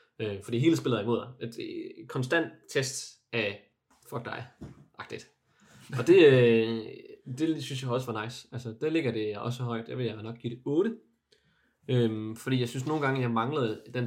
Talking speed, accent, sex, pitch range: 185 wpm, native, male, 115-130 Hz